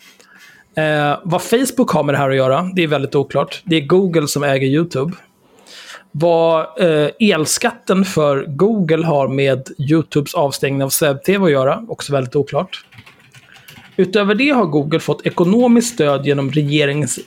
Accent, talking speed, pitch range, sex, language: native, 145 wpm, 140-175 Hz, male, Swedish